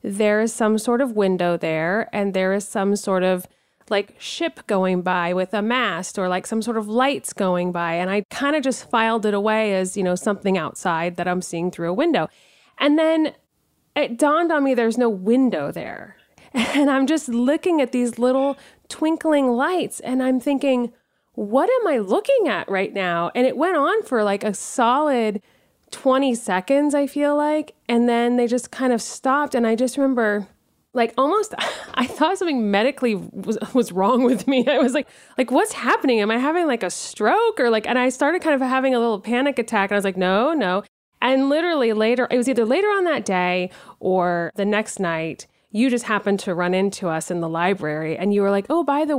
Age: 30-49